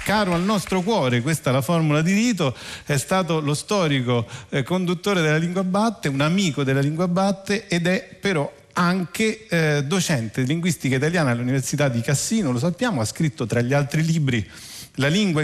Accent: native